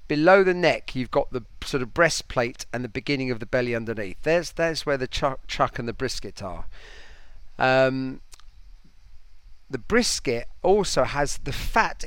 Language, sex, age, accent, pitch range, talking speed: English, male, 40-59, British, 115-155 Hz, 165 wpm